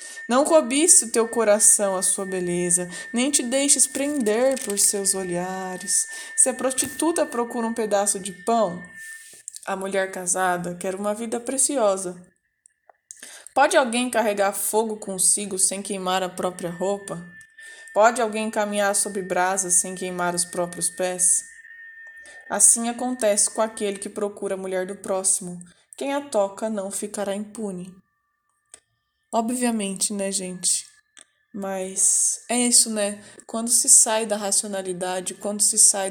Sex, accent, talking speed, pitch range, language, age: female, Brazilian, 135 wpm, 190-240 Hz, Portuguese, 20-39